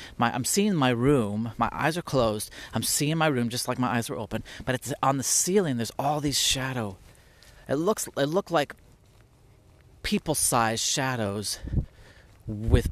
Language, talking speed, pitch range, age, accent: English, 165 wpm, 105-140 Hz, 30-49, American